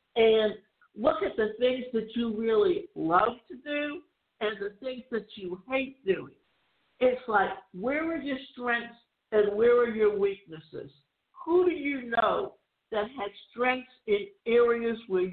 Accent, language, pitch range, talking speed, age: American, English, 215-270 Hz, 155 wpm, 60-79